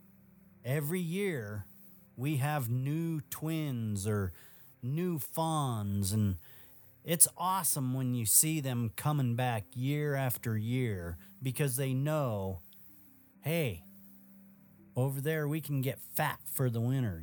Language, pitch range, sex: English, 105-150 Hz, male